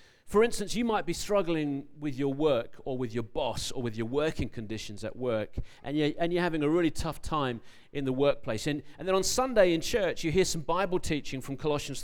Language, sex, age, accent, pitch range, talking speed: English, male, 40-59, British, 130-170 Hz, 230 wpm